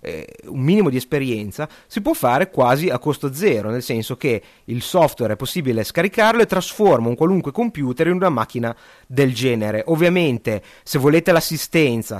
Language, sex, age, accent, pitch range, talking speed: Italian, male, 30-49, native, 115-160 Hz, 160 wpm